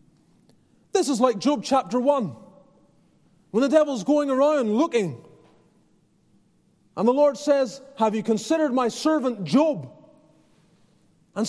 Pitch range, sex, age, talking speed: 175-250 Hz, male, 30-49, 120 wpm